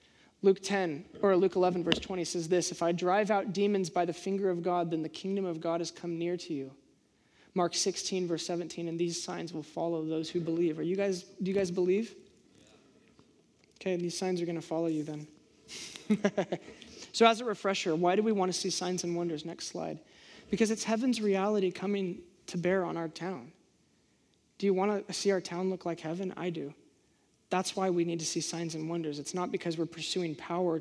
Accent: American